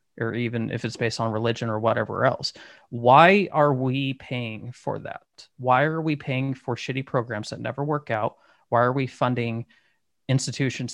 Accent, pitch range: American, 115-135 Hz